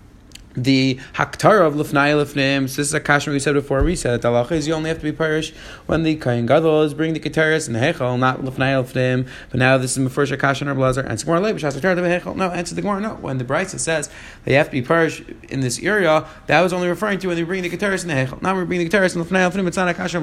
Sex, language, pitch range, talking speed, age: male, English, 135-165 Hz, 260 wpm, 30-49